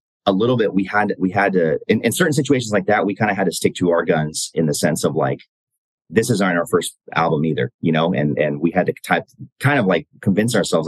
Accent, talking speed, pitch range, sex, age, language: American, 260 wpm, 80-110 Hz, male, 30-49, English